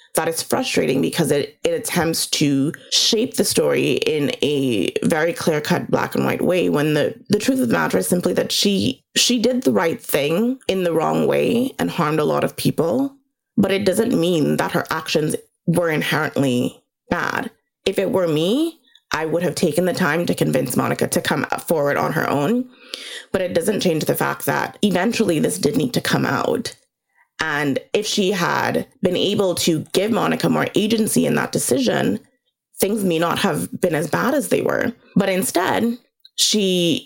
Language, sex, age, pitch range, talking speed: English, female, 20-39, 170-250 Hz, 185 wpm